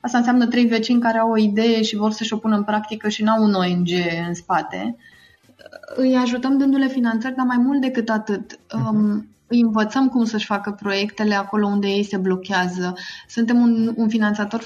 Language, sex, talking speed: Romanian, female, 180 wpm